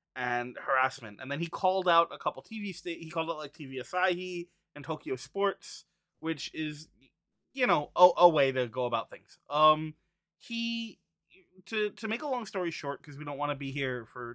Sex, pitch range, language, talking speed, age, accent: male, 145-180 Hz, English, 200 wpm, 20-39, American